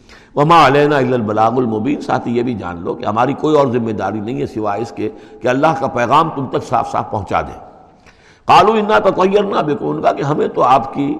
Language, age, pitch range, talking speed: Urdu, 60-79, 120-165 Hz, 225 wpm